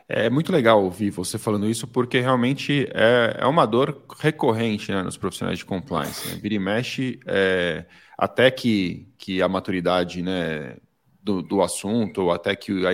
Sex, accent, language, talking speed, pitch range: male, Brazilian, Portuguese, 165 wpm, 95-125 Hz